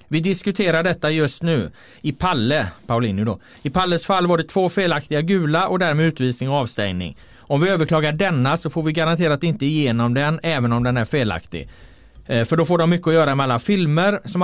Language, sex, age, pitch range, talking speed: Swedish, male, 30-49, 120-165 Hz, 205 wpm